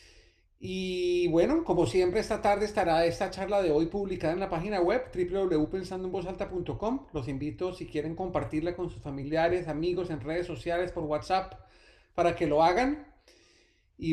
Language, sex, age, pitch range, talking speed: Spanish, male, 40-59, 165-200 Hz, 155 wpm